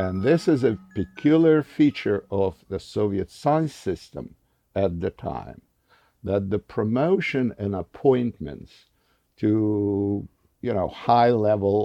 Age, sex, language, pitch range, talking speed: 60-79, male, English, 95-125 Hz, 115 wpm